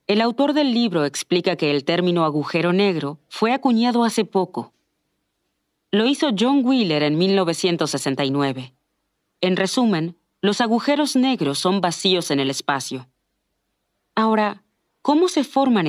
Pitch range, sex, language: 150-220 Hz, female, Spanish